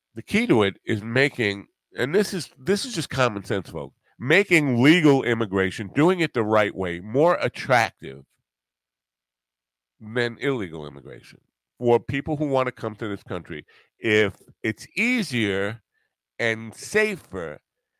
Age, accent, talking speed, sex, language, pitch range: 50-69, American, 140 wpm, male, English, 80-140 Hz